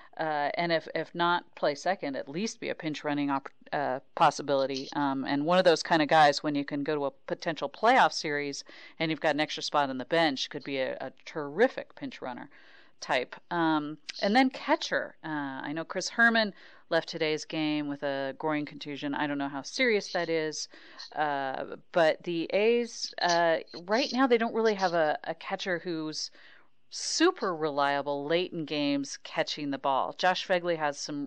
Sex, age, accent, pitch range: female, 40-59, American, 145-180 Hz